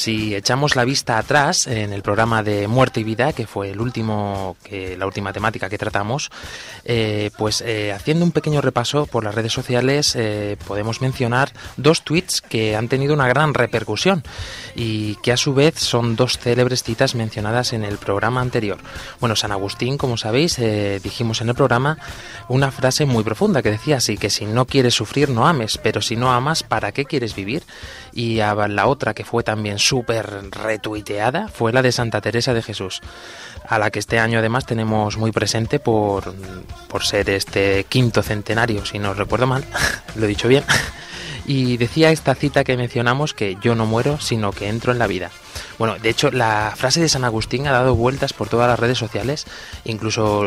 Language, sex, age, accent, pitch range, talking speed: Spanish, male, 20-39, Spanish, 105-125 Hz, 195 wpm